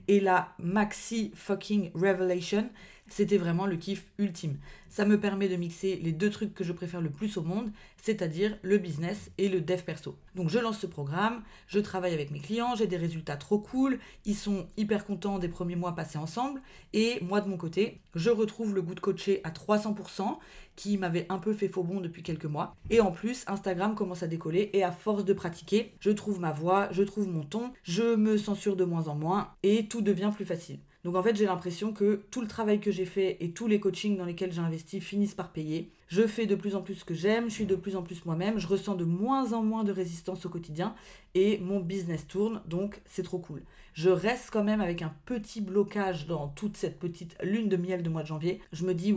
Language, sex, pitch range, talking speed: French, female, 170-205 Hz, 235 wpm